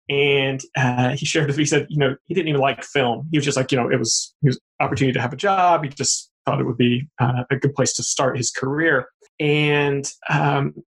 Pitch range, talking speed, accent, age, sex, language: 130-155 Hz, 250 wpm, American, 20-39, male, English